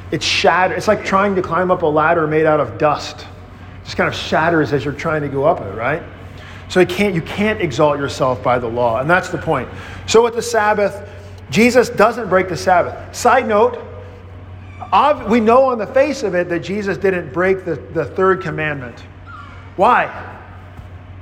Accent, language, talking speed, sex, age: American, English, 180 wpm, male, 40-59